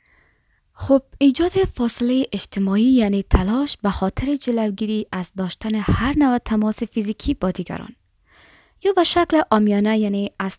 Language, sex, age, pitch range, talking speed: Persian, female, 20-39, 190-275 Hz, 130 wpm